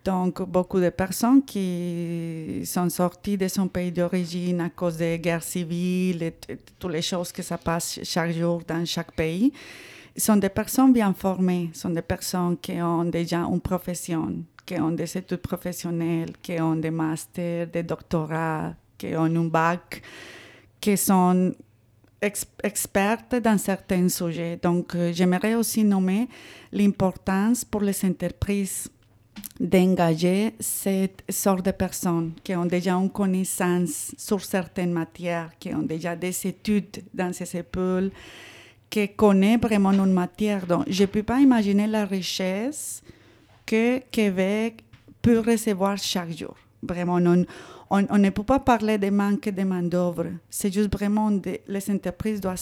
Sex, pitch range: female, 170-200 Hz